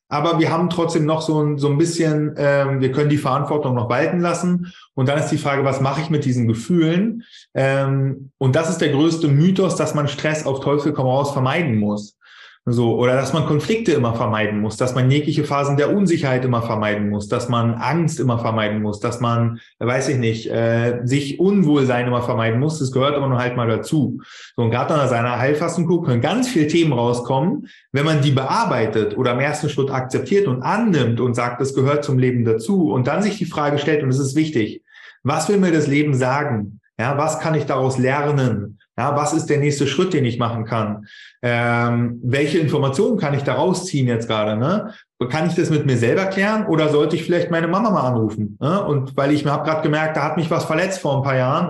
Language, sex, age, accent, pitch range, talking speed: German, male, 20-39, German, 125-160 Hz, 215 wpm